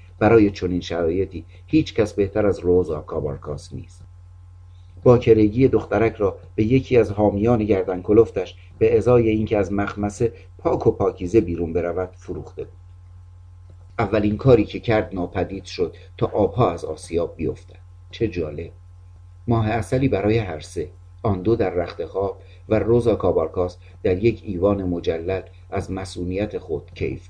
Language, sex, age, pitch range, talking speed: Persian, male, 50-69, 90-115 Hz, 140 wpm